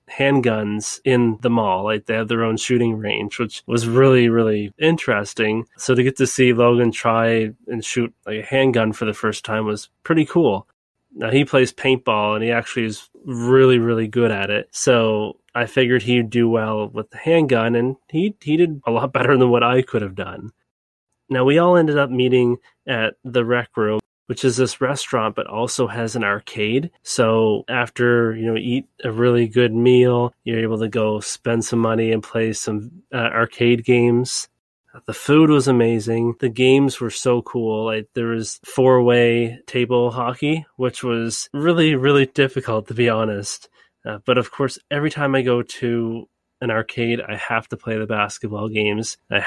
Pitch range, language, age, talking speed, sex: 110-130 Hz, English, 20-39, 185 wpm, male